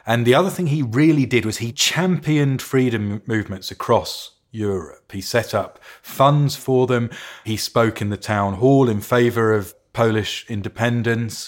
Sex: male